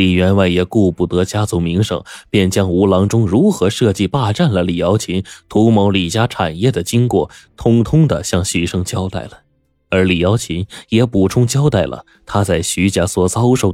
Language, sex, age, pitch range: Chinese, male, 20-39, 90-115 Hz